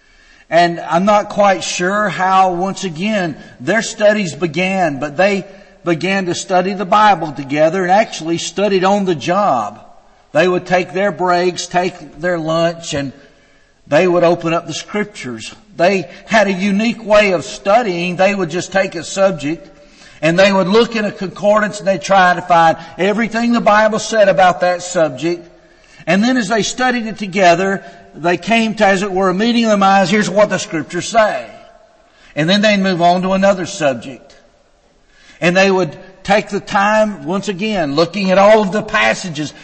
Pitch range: 170-210 Hz